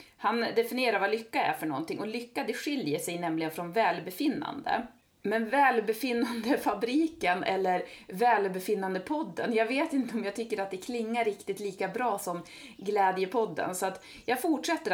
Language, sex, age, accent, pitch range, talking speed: Swedish, female, 30-49, native, 180-235 Hz, 150 wpm